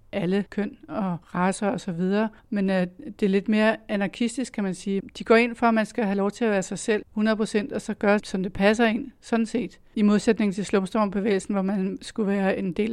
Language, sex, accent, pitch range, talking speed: Danish, female, native, 195-220 Hz, 235 wpm